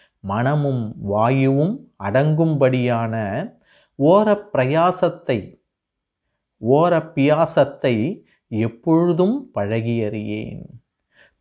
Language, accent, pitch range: Tamil, native, 110-155 Hz